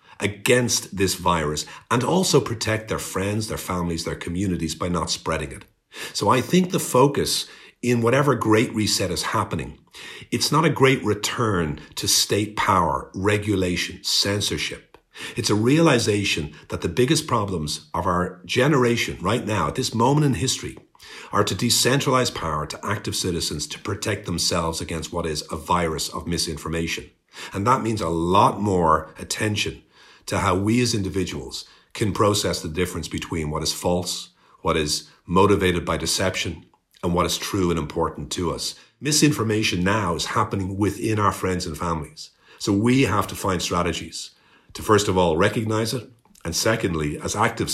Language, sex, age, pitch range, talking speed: English, male, 50-69, 85-110 Hz, 160 wpm